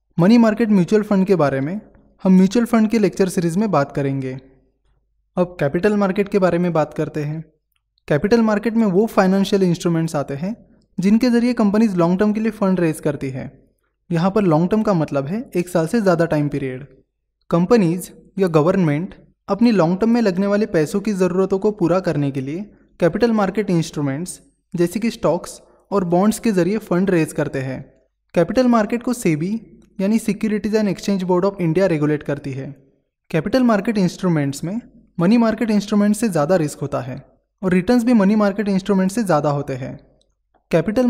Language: Hindi